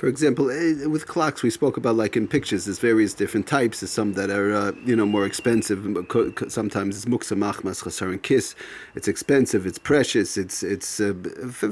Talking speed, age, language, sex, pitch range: 190 wpm, 40-59, English, male, 100-125 Hz